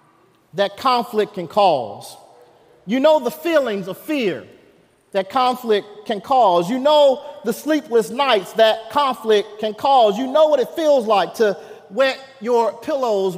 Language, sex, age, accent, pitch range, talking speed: English, male, 40-59, American, 215-275 Hz, 150 wpm